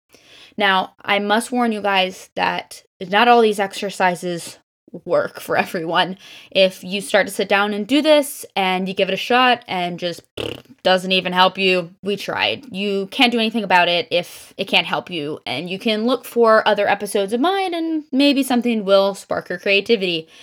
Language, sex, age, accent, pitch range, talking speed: English, female, 10-29, American, 190-235 Hz, 190 wpm